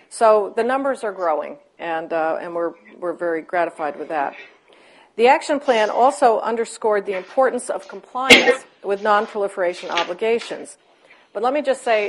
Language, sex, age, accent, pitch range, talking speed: English, female, 50-69, American, 175-220 Hz, 155 wpm